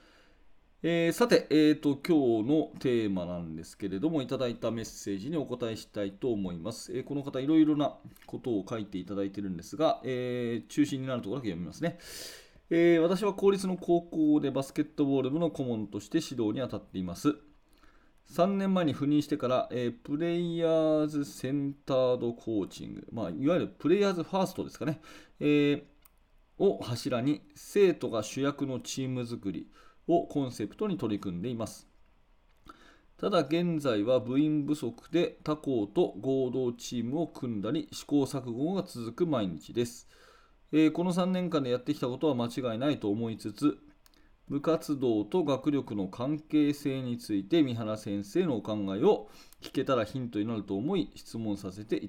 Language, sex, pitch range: Japanese, male, 115-155 Hz